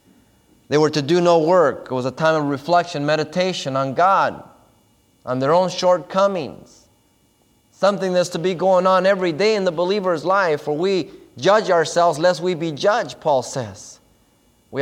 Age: 30-49